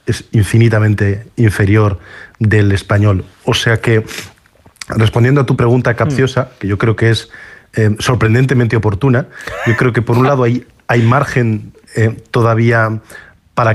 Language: Spanish